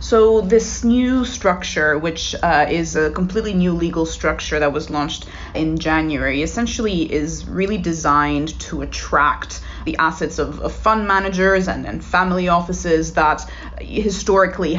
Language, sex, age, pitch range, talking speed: English, female, 20-39, 155-190 Hz, 140 wpm